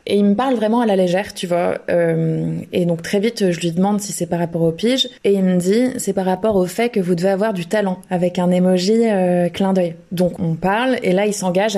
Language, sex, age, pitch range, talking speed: French, female, 20-39, 180-215 Hz, 265 wpm